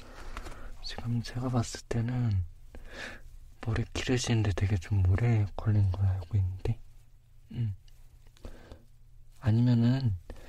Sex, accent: male, native